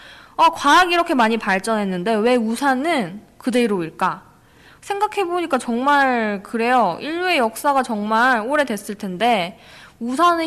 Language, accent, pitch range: Korean, native, 200-285 Hz